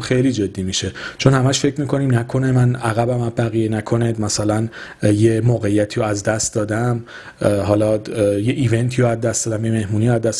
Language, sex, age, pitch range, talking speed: Persian, male, 40-59, 110-135 Hz, 180 wpm